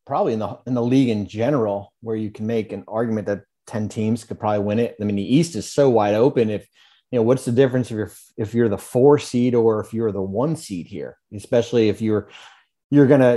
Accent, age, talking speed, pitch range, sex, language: American, 30-49, 245 wpm, 110-135 Hz, male, English